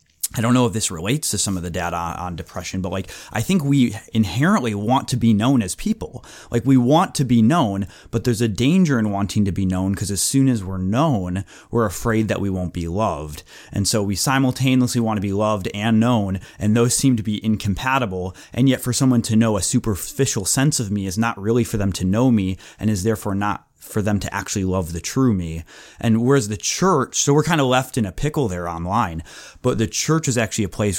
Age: 30-49